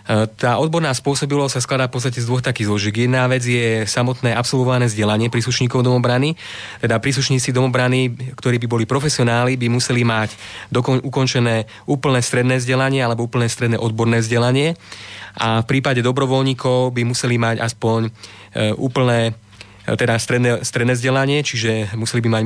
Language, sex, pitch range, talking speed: Slovak, male, 115-130 Hz, 150 wpm